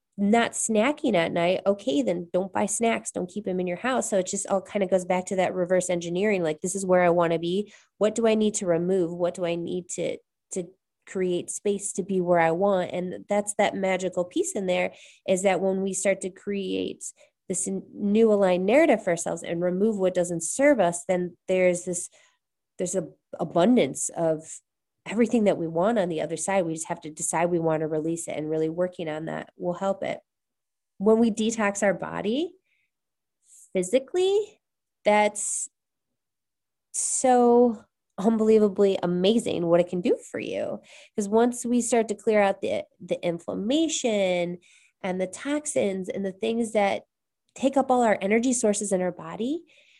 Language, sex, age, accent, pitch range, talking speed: English, female, 20-39, American, 180-225 Hz, 185 wpm